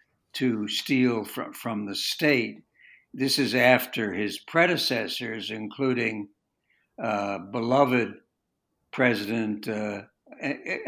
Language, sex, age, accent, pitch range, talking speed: English, male, 60-79, American, 105-130 Hz, 90 wpm